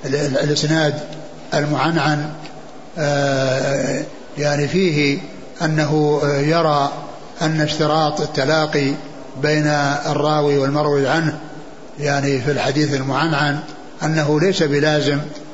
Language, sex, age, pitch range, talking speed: Arabic, male, 60-79, 145-160 Hz, 75 wpm